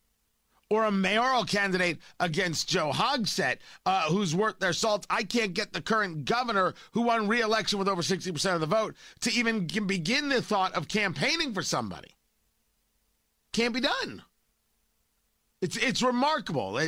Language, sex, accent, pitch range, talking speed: English, male, American, 135-210 Hz, 155 wpm